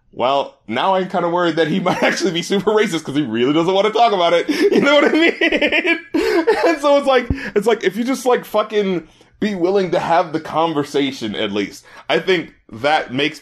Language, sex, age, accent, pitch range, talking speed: English, male, 30-49, American, 155-240 Hz, 225 wpm